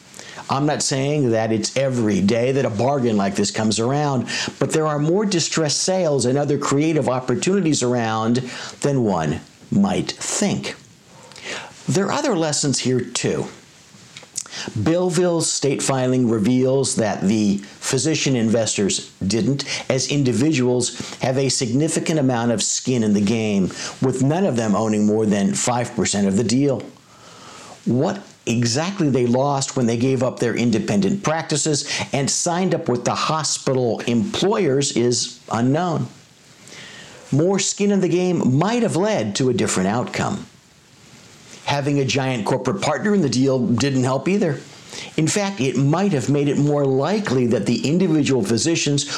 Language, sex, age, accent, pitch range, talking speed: English, male, 50-69, American, 120-160 Hz, 150 wpm